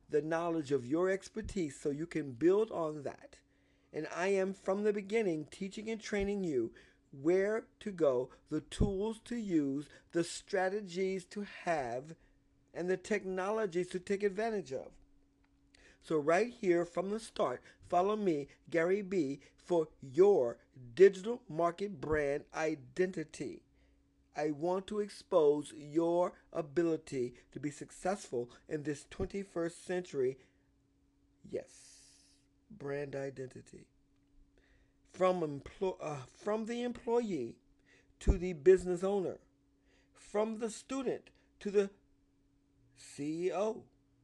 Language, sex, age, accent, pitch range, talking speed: English, male, 50-69, American, 140-195 Hz, 120 wpm